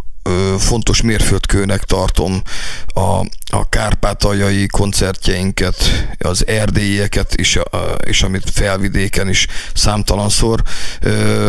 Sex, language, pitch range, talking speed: male, Hungarian, 90-110 Hz, 90 wpm